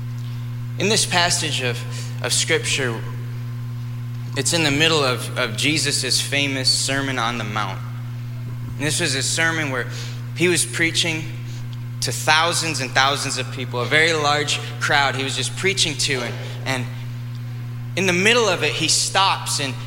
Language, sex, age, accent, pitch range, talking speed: English, male, 10-29, American, 120-135 Hz, 155 wpm